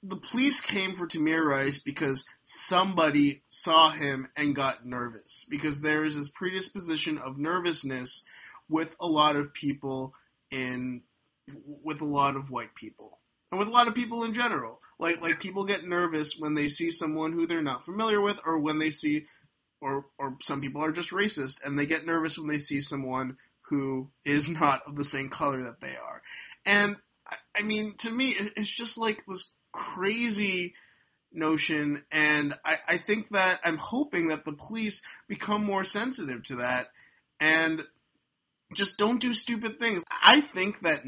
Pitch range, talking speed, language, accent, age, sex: 145-200 Hz, 180 wpm, English, American, 30-49, male